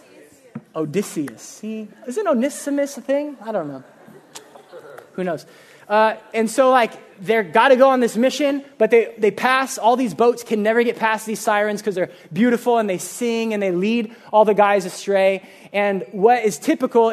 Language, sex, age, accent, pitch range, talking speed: English, male, 20-39, American, 190-235 Hz, 180 wpm